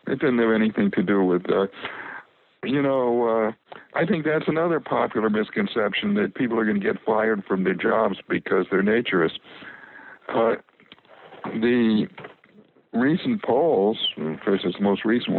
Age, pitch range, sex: 60-79, 90-110 Hz, male